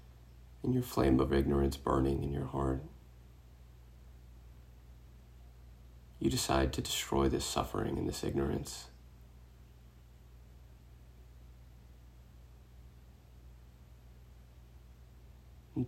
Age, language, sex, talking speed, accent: 30-49, English, male, 70 wpm, American